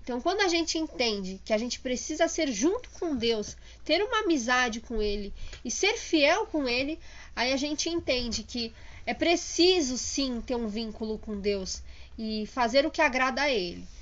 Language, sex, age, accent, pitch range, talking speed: Portuguese, female, 10-29, Brazilian, 245-330 Hz, 185 wpm